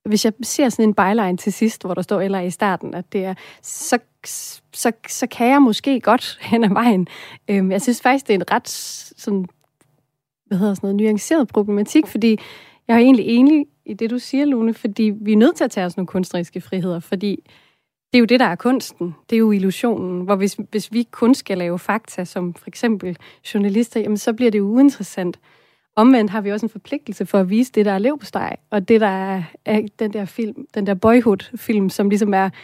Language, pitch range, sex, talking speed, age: Danish, 190-235 Hz, female, 215 wpm, 30-49